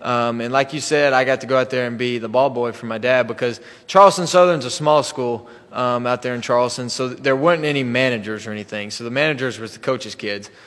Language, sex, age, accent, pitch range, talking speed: English, male, 20-39, American, 120-135 Hz, 260 wpm